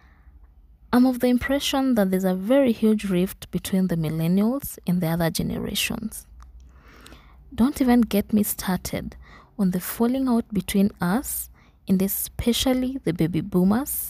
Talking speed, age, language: 140 wpm, 20-39, English